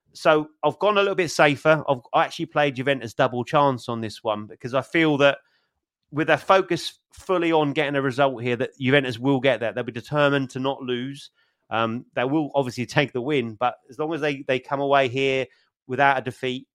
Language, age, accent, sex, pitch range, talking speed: English, 30-49, British, male, 125-140 Hz, 215 wpm